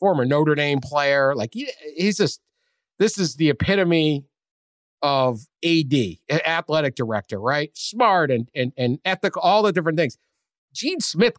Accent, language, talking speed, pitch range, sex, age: American, English, 150 wpm, 125-175 Hz, male, 50-69